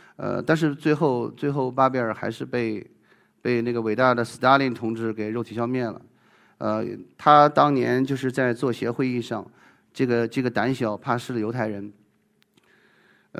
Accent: native